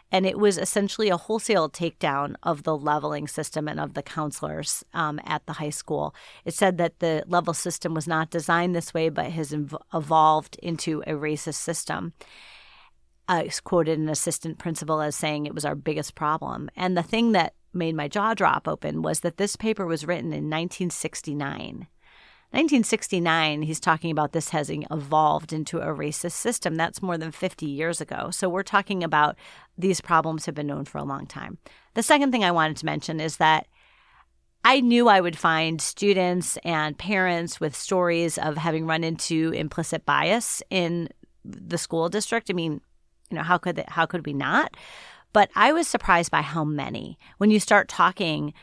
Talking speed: 185 wpm